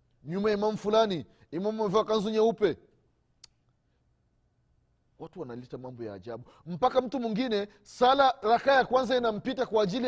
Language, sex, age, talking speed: Swahili, male, 30-49, 130 wpm